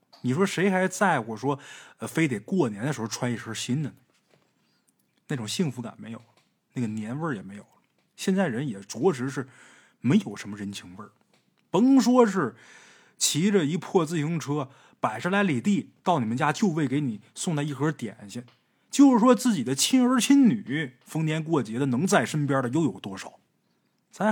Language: Chinese